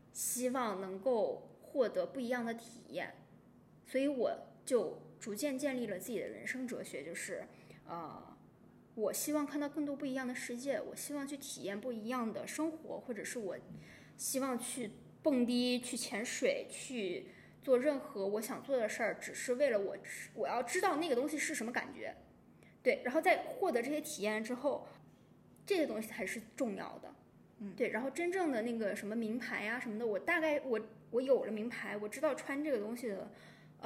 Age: 20-39